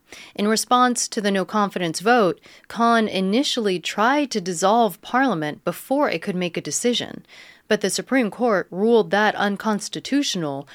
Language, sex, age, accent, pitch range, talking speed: English, female, 30-49, American, 165-220 Hz, 140 wpm